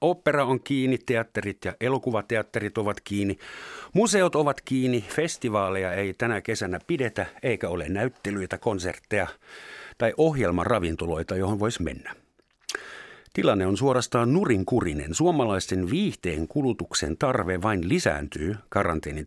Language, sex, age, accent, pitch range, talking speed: Finnish, male, 60-79, native, 90-120 Hz, 110 wpm